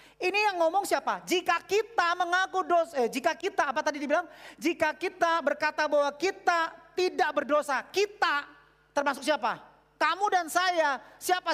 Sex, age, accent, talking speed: male, 40-59, native, 145 wpm